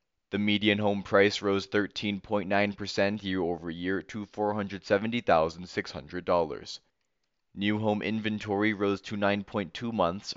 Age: 20-39